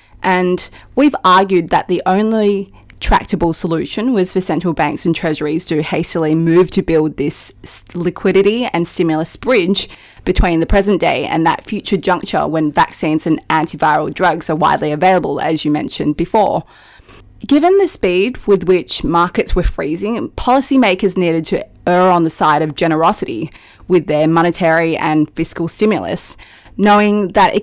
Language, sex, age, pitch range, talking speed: English, female, 20-39, 160-200 Hz, 150 wpm